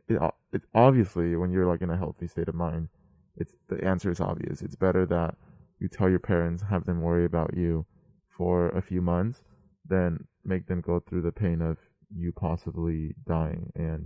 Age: 20-39